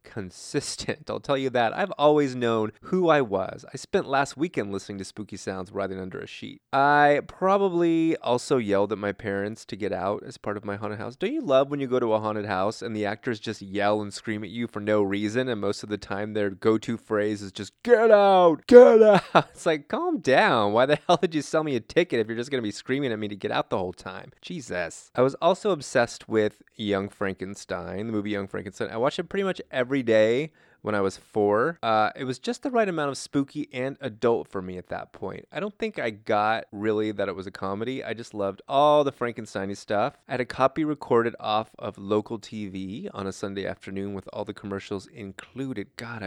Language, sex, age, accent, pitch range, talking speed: English, male, 20-39, American, 100-140 Hz, 230 wpm